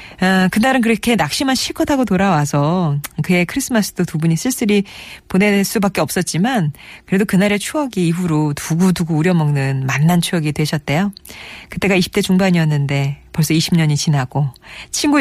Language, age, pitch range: Korean, 40-59, 145-195 Hz